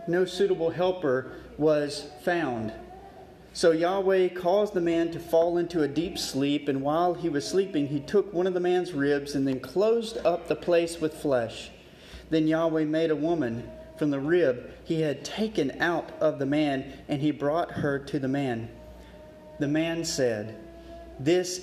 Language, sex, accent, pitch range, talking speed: English, male, American, 130-165 Hz, 170 wpm